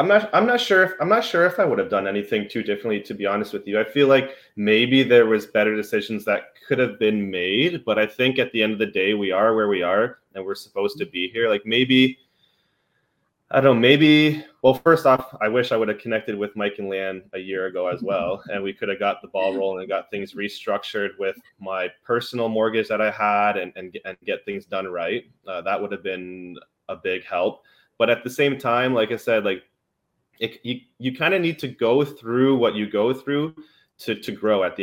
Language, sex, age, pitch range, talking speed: English, male, 20-39, 100-130 Hz, 240 wpm